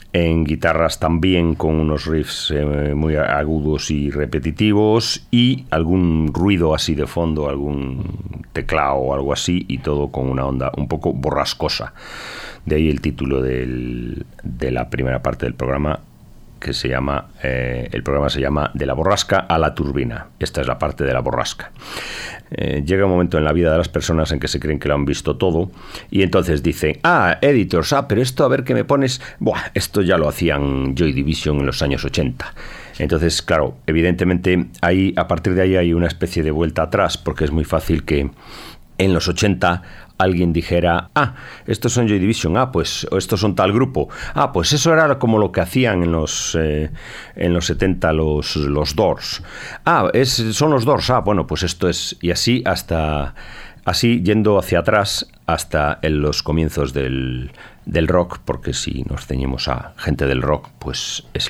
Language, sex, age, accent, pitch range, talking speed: Spanish, male, 40-59, Spanish, 70-90 Hz, 185 wpm